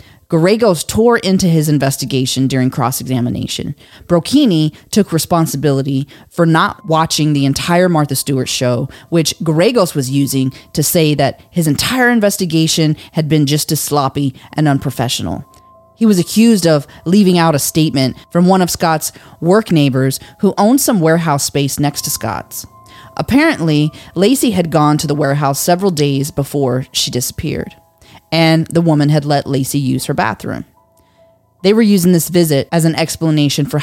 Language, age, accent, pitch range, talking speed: English, 30-49, American, 135-180 Hz, 155 wpm